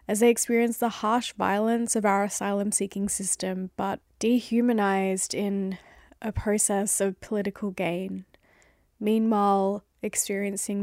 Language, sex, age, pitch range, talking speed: English, female, 10-29, 195-230 Hz, 110 wpm